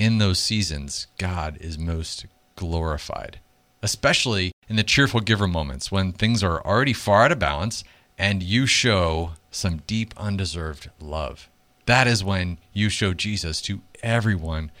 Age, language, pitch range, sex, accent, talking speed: 40-59, English, 85-110 Hz, male, American, 145 wpm